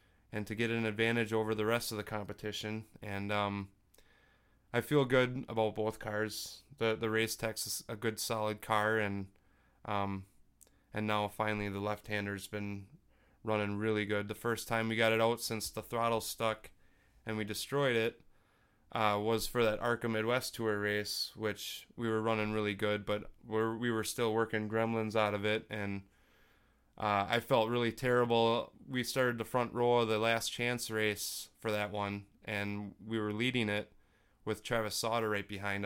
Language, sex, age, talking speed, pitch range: English, male, 20-39, 180 wpm, 105-115 Hz